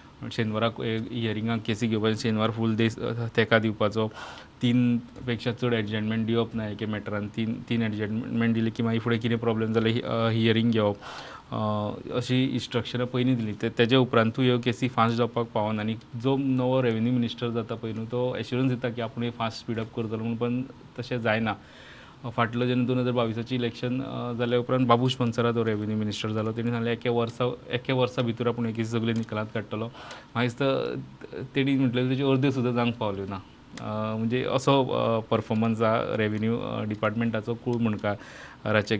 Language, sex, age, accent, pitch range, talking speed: English, male, 20-39, Indian, 110-120 Hz, 185 wpm